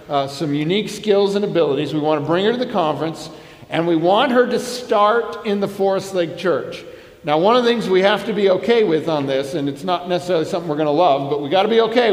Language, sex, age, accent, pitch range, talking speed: English, male, 50-69, American, 160-205 Hz, 260 wpm